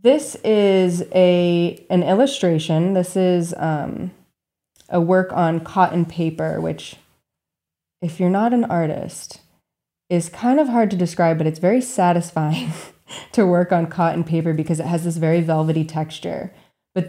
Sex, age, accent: female, 20-39, American